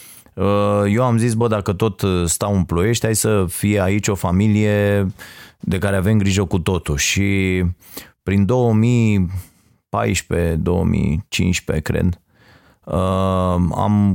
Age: 30-49